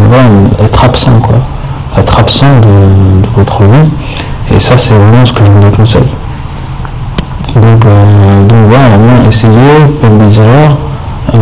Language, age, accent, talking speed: French, 50-69, French, 130 wpm